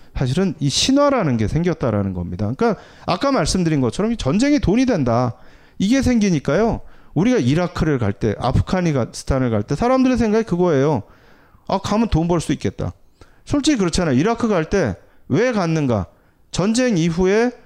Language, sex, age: Korean, male, 30-49